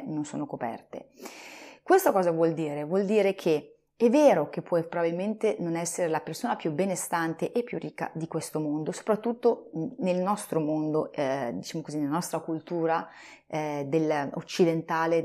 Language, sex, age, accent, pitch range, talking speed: Italian, female, 30-49, native, 160-230 Hz, 155 wpm